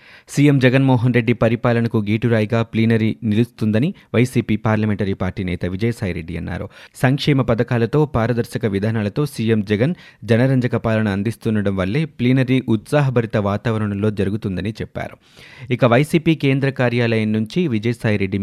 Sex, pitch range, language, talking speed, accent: male, 105-125 Hz, Telugu, 110 wpm, native